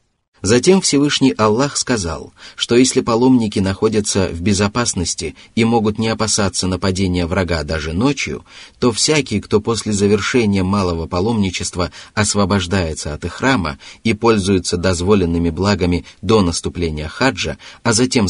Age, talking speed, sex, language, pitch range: 30-49, 125 wpm, male, Russian, 90-115 Hz